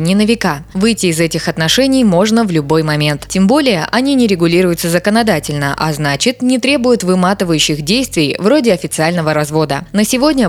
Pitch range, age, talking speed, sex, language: 155-220 Hz, 20-39, 160 wpm, female, Russian